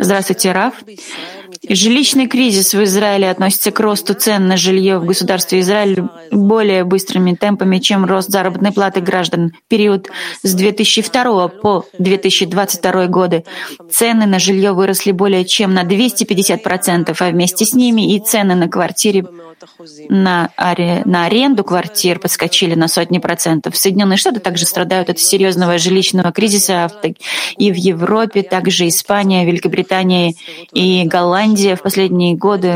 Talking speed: 130 wpm